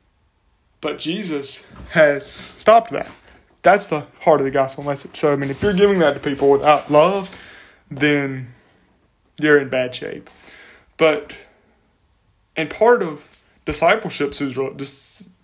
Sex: male